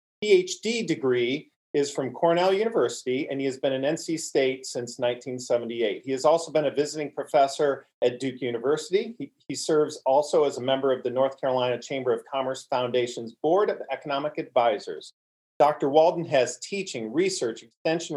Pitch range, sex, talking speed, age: 130-170 Hz, male, 165 wpm, 40-59